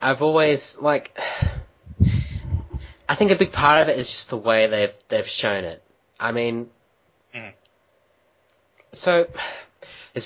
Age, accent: 10-29, Australian